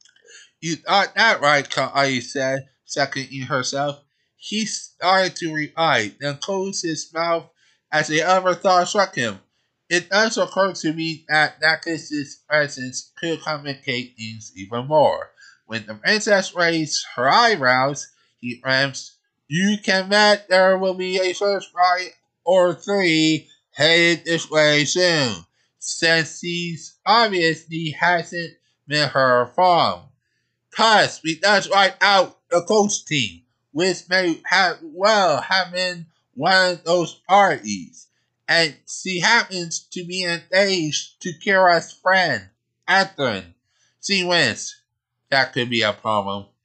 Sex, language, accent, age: male, English, American, 20-39